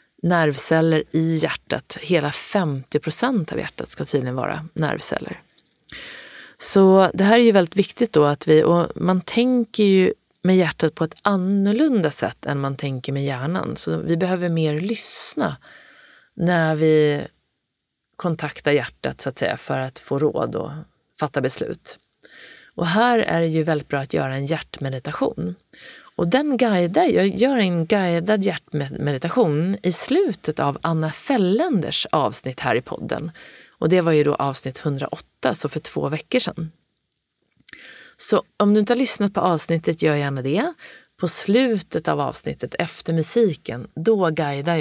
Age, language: 30-49, Swedish